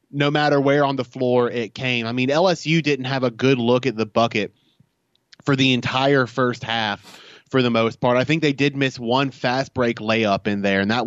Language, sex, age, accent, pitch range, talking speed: English, male, 20-39, American, 115-135 Hz, 220 wpm